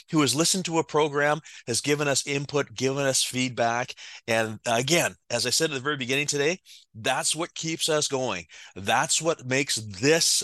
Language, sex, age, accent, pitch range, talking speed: English, male, 30-49, American, 120-170 Hz, 185 wpm